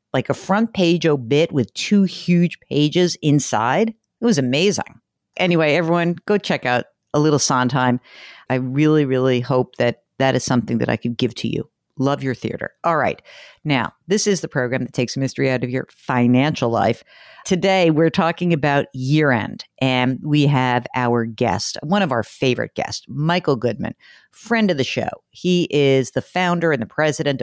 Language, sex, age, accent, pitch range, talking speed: English, female, 50-69, American, 130-175 Hz, 180 wpm